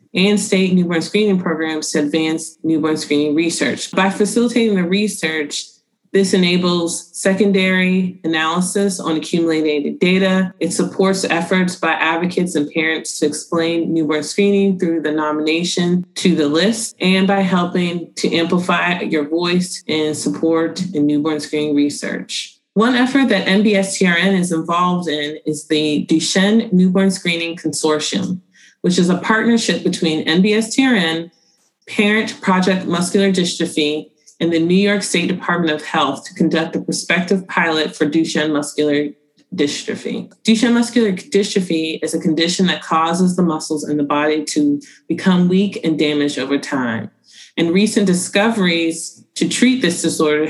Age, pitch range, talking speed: 20-39, 160-195 Hz, 140 wpm